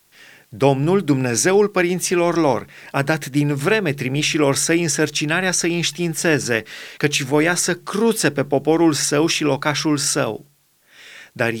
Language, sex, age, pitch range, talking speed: Romanian, male, 30-49, 145-180 Hz, 125 wpm